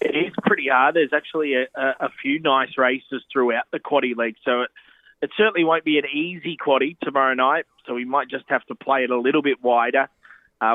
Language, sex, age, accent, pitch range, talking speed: English, male, 20-39, Australian, 125-145 Hz, 220 wpm